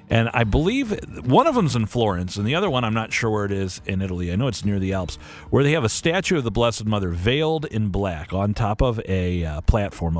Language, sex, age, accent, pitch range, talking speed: English, male, 40-59, American, 105-165 Hz, 260 wpm